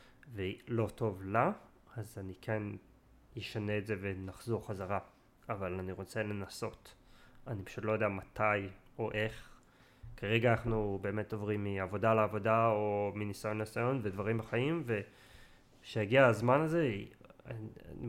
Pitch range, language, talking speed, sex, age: 100-120 Hz, Hebrew, 125 wpm, male, 20-39